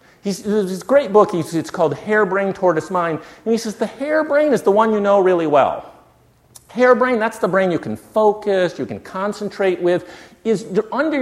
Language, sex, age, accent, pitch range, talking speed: English, male, 50-69, American, 145-200 Hz, 200 wpm